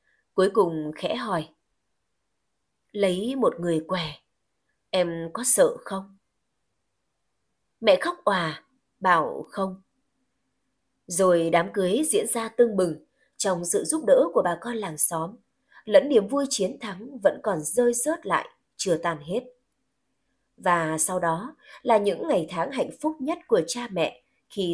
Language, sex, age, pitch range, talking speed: Vietnamese, female, 20-39, 180-260 Hz, 145 wpm